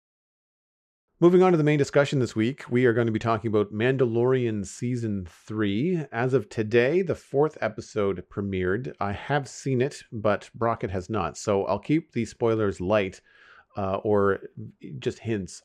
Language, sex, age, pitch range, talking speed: English, male, 40-59, 95-125 Hz, 165 wpm